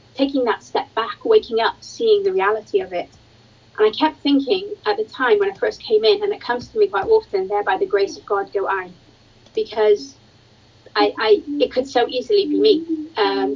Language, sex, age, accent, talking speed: English, female, 30-49, British, 215 wpm